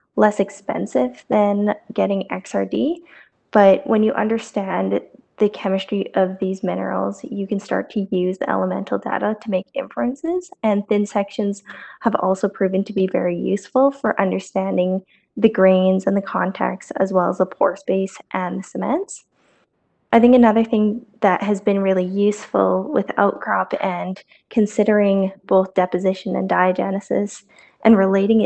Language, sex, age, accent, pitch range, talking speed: English, female, 10-29, American, 185-210 Hz, 150 wpm